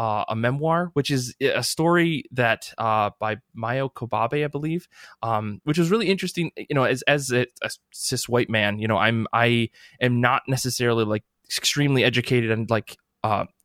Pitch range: 115-130 Hz